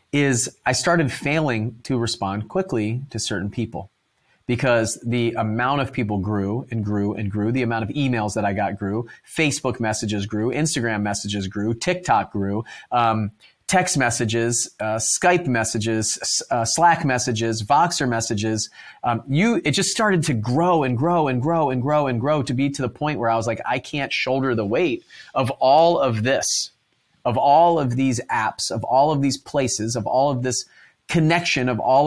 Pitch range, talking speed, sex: 115-150 Hz, 185 wpm, male